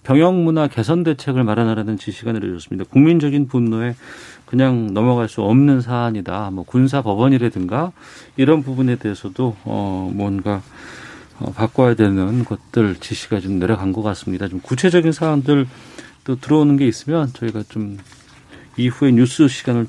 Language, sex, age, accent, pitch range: Korean, male, 40-59, native, 110-160 Hz